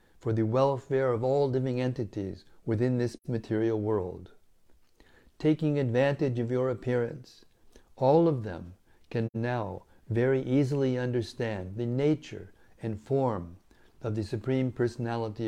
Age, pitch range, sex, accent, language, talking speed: 60-79, 110-135 Hz, male, American, English, 125 wpm